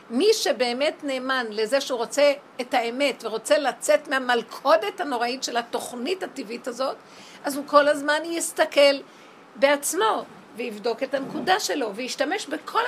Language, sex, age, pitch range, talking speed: Hebrew, female, 50-69, 225-285 Hz, 130 wpm